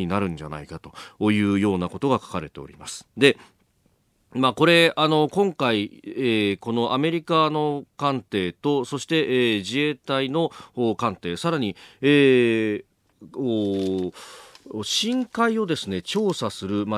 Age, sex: 40-59, male